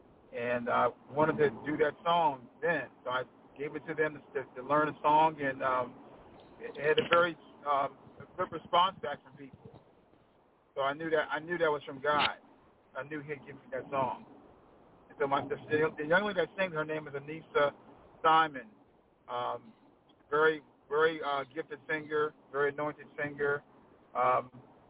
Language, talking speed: English, 180 wpm